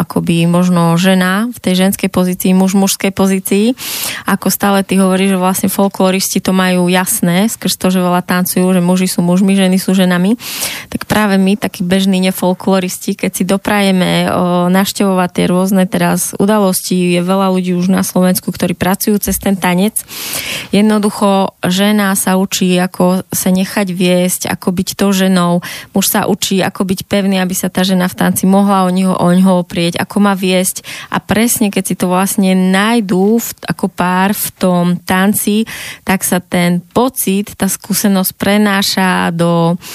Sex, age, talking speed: female, 20-39, 165 wpm